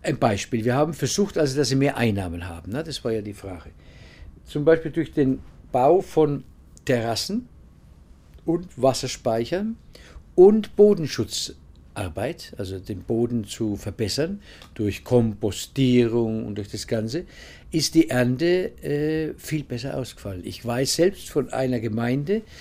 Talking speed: 140 wpm